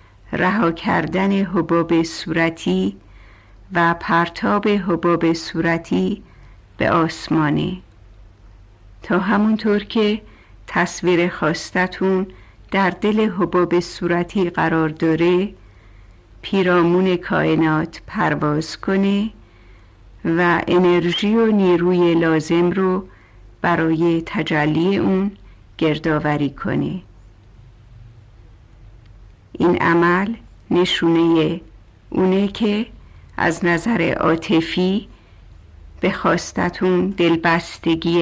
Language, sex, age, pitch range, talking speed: Persian, female, 50-69, 110-180 Hz, 75 wpm